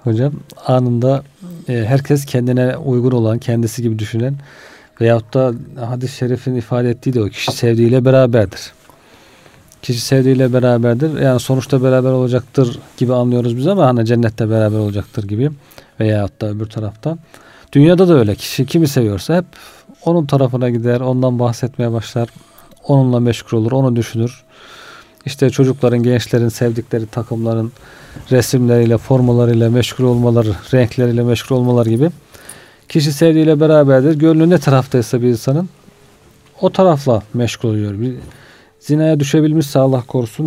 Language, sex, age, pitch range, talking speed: Turkish, male, 40-59, 120-145 Hz, 130 wpm